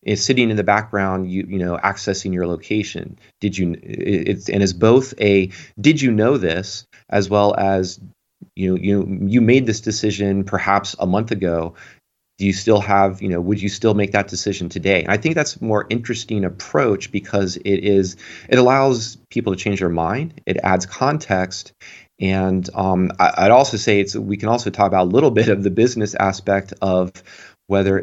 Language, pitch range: English, 95-110 Hz